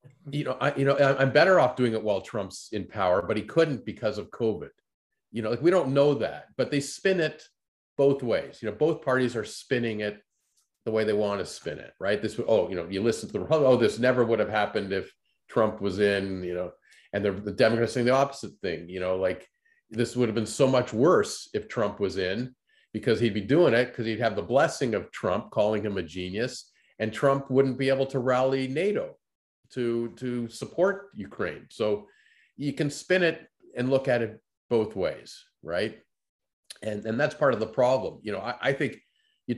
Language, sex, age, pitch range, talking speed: English, male, 40-59, 105-140 Hz, 215 wpm